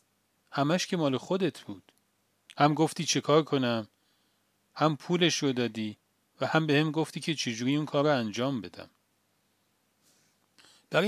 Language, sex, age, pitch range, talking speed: Persian, male, 40-59, 115-160 Hz, 140 wpm